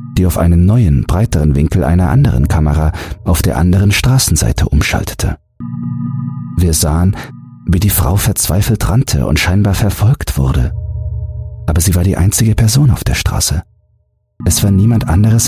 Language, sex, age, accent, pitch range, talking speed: German, male, 40-59, German, 80-105 Hz, 145 wpm